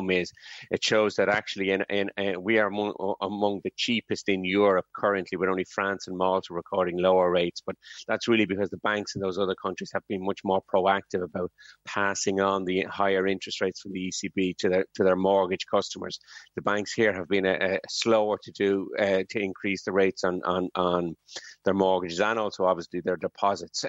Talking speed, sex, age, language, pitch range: 205 wpm, male, 30-49, English, 90-100 Hz